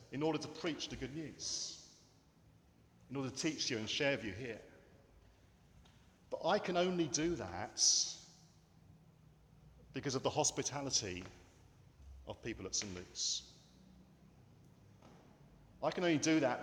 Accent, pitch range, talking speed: British, 100-145 Hz, 135 wpm